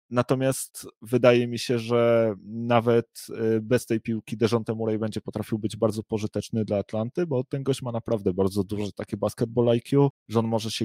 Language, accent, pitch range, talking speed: Polish, native, 105-120 Hz, 175 wpm